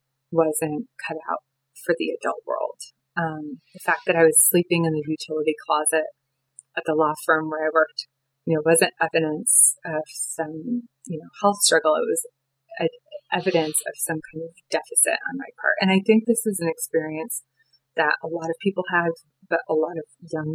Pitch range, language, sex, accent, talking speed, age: 155-185 Hz, English, female, American, 185 wpm, 30-49